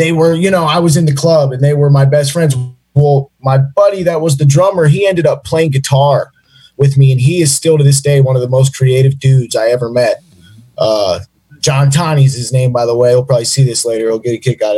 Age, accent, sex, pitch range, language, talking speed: 20-39, American, male, 135-160 Hz, English, 260 wpm